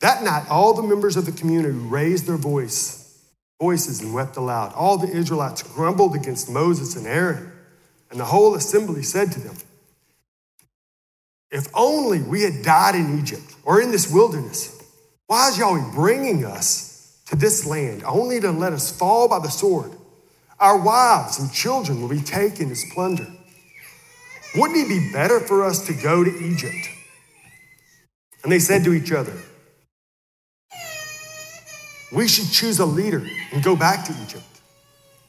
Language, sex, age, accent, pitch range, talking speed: English, male, 50-69, American, 145-190 Hz, 155 wpm